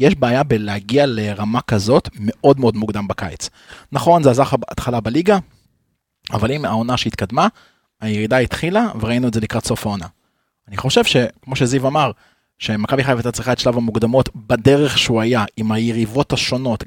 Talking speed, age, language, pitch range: 155 wpm, 20-39, Hebrew, 115-150 Hz